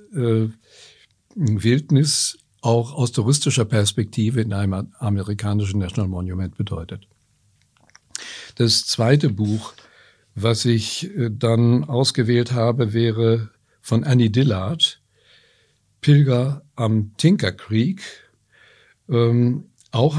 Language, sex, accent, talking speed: German, male, German, 85 wpm